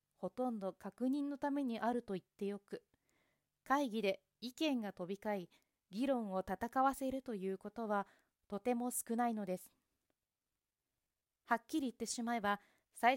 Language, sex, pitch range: Japanese, female, 200-255 Hz